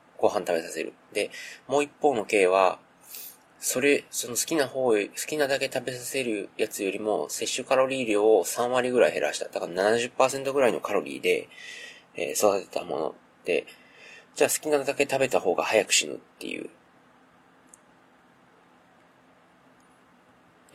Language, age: Japanese, 40-59